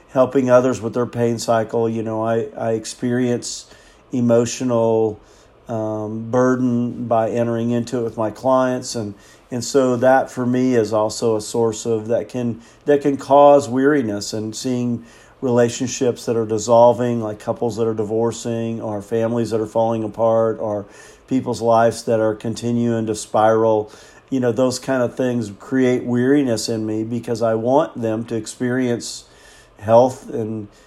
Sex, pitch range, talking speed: male, 115-130 Hz, 155 wpm